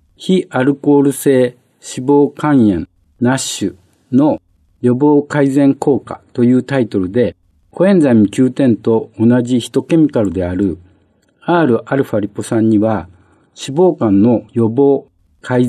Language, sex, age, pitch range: Japanese, male, 50-69, 100-145 Hz